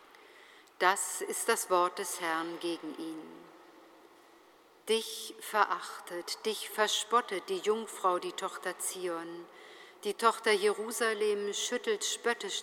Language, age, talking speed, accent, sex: German, 50-69, 105 wpm, German, female